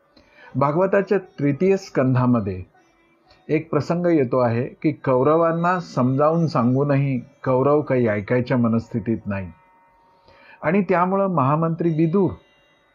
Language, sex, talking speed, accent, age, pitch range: Marathi, male, 95 wpm, native, 50-69, 125-180 Hz